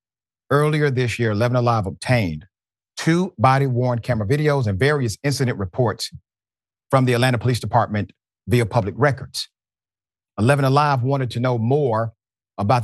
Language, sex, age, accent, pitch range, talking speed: English, male, 40-59, American, 105-135 Hz, 130 wpm